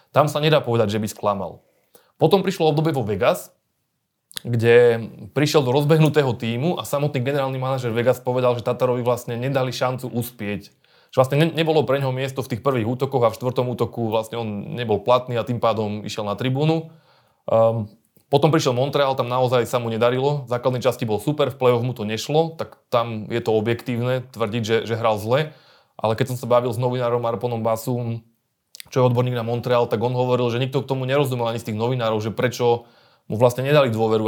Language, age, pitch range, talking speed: Slovak, 20-39, 115-135 Hz, 195 wpm